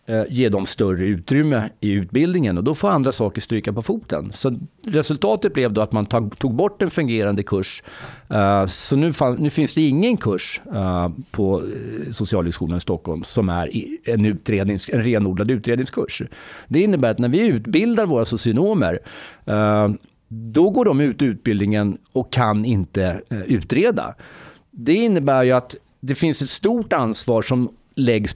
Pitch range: 100-135 Hz